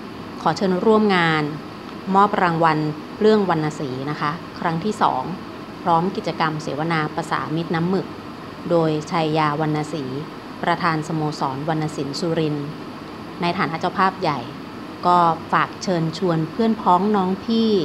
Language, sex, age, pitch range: Thai, female, 30-49, 155-180 Hz